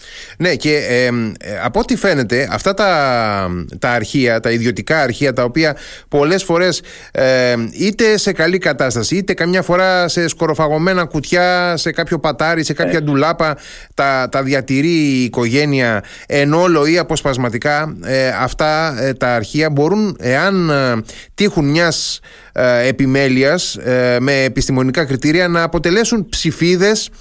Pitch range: 130-175 Hz